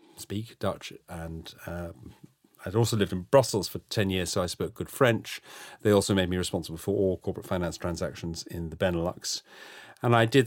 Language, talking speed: English, 190 wpm